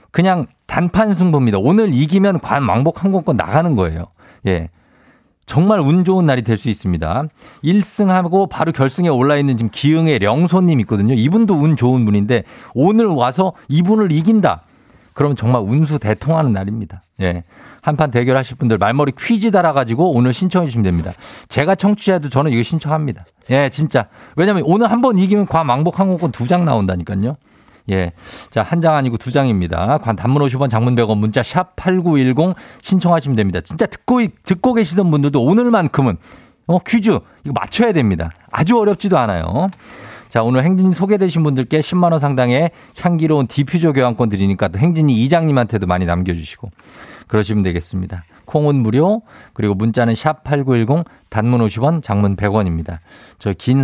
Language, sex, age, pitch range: Korean, male, 50-69, 110-175 Hz